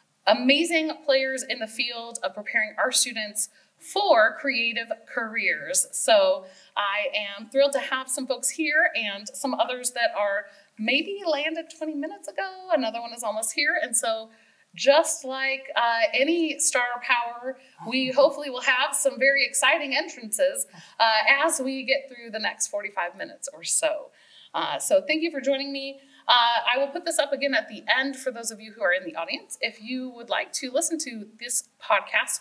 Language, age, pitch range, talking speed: English, 30-49, 225-305 Hz, 180 wpm